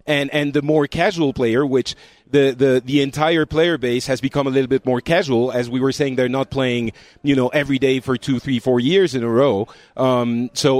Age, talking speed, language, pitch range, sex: 40-59, 230 wpm, English, 130-165 Hz, male